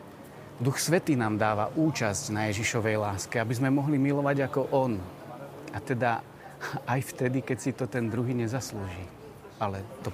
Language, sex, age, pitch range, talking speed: Slovak, male, 30-49, 110-140 Hz, 155 wpm